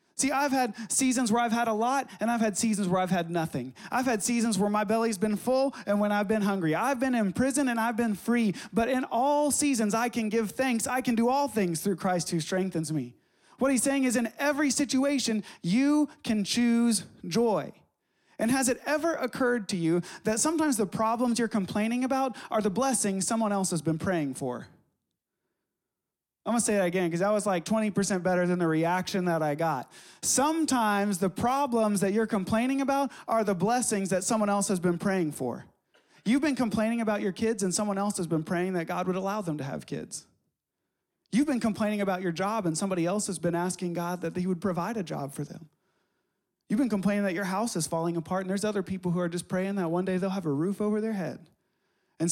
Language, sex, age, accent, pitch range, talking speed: English, male, 30-49, American, 185-235 Hz, 220 wpm